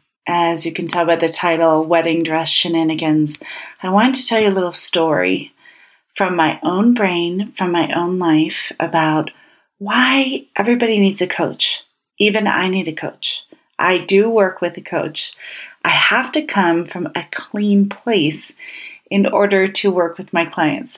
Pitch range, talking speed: 165-205 Hz, 165 wpm